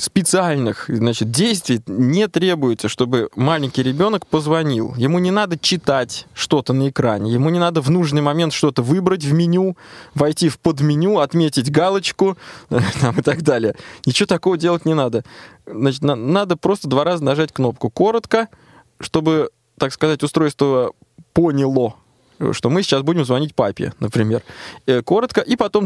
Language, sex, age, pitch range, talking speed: Russian, male, 20-39, 130-180 Hz, 140 wpm